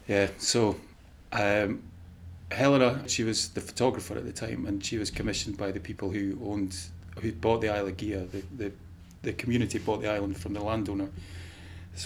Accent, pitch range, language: British, 90-105 Hz, English